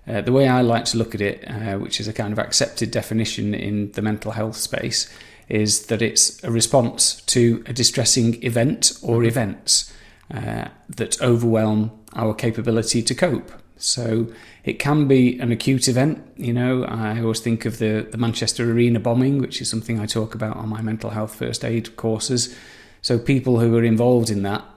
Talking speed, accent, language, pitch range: 190 wpm, British, English, 110-125 Hz